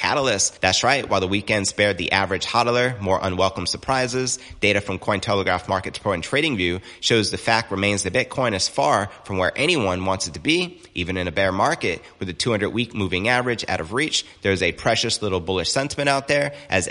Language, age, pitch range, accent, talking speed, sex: English, 30-49, 95-125 Hz, American, 210 wpm, male